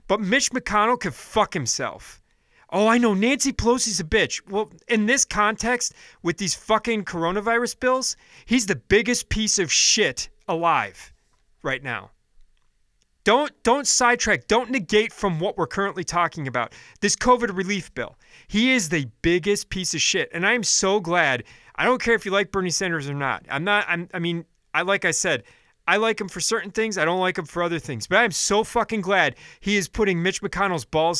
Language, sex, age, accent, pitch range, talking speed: English, male, 30-49, American, 170-225 Hz, 195 wpm